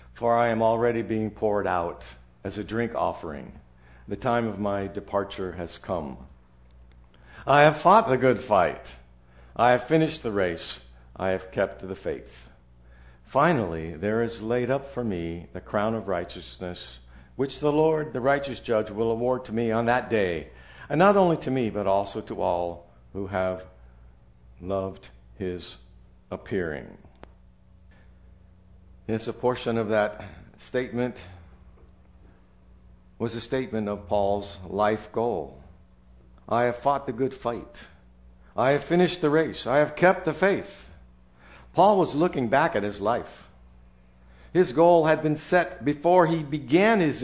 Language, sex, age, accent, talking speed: English, male, 60-79, American, 150 wpm